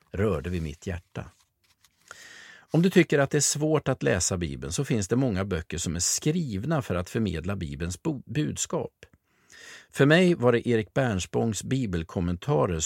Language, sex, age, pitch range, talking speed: Swedish, male, 50-69, 95-140 Hz, 165 wpm